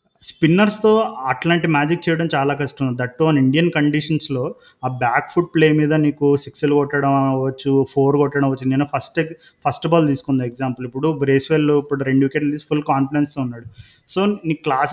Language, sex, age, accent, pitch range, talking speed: Telugu, male, 30-49, native, 135-165 Hz, 160 wpm